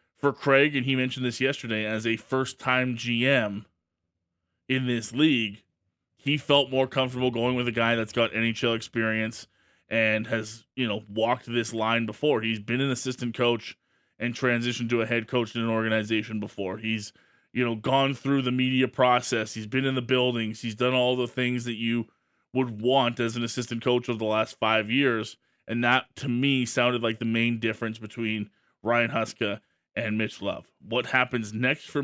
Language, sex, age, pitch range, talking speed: English, male, 20-39, 115-130 Hz, 185 wpm